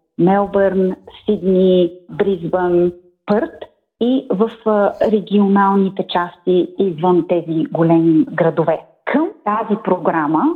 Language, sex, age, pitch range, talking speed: Bulgarian, female, 30-49, 180-230 Hz, 85 wpm